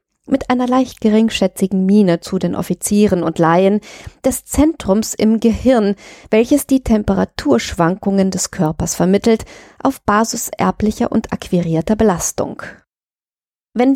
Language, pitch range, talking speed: German, 175-235 Hz, 115 wpm